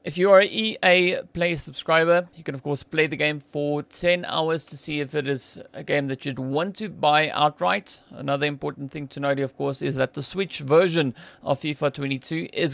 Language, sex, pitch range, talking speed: English, male, 145-170 Hz, 215 wpm